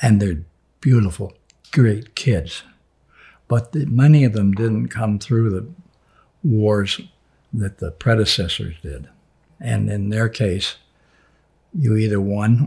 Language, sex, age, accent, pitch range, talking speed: English, male, 60-79, American, 100-120 Hz, 120 wpm